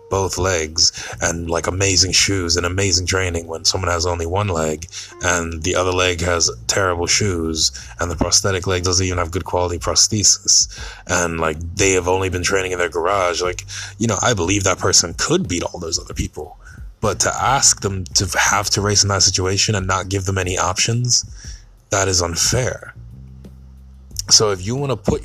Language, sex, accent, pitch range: English, male, American, 85-100 Hz